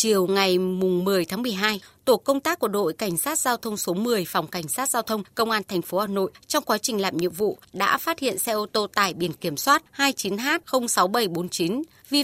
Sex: female